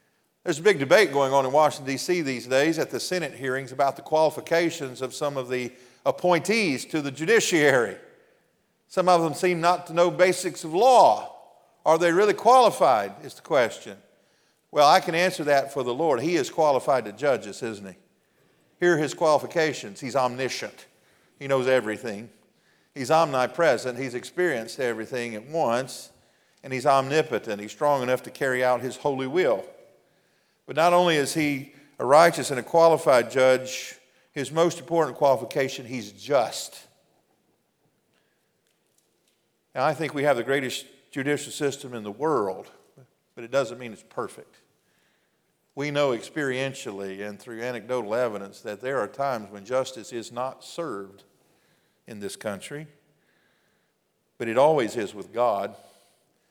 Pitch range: 125-165 Hz